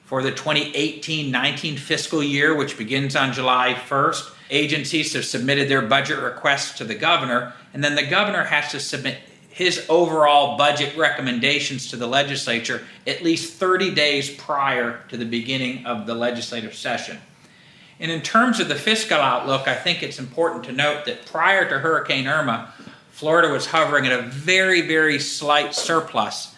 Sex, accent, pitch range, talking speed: male, American, 125-155 Hz, 165 wpm